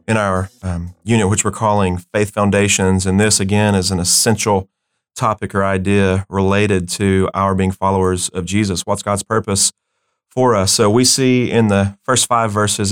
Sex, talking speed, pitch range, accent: male, 175 wpm, 95-105 Hz, American